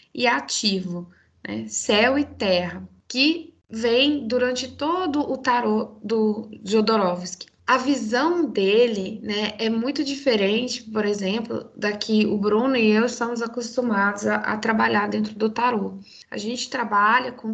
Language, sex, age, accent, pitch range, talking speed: Portuguese, female, 10-29, Brazilian, 210-250 Hz, 140 wpm